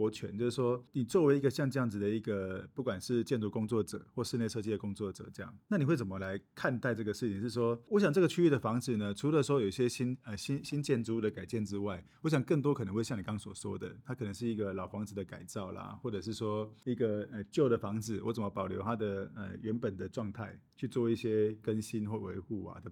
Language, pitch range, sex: Chinese, 105-135 Hz, male